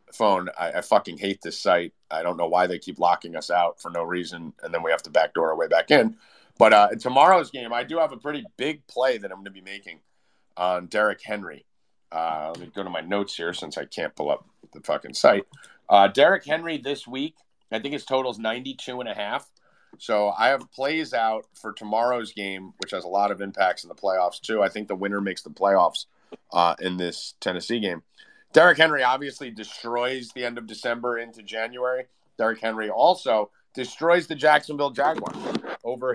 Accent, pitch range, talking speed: American, 105-140 Hz, 210 wpm